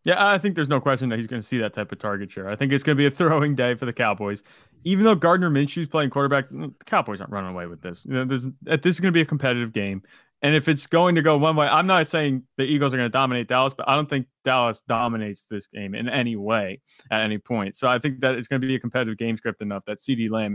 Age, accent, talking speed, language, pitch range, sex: 30-49, American, 290 wpm, English, 115-145 Hz, male